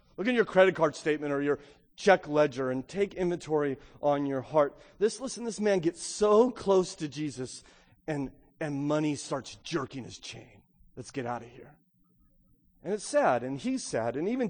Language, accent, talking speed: English, American, 185 wpm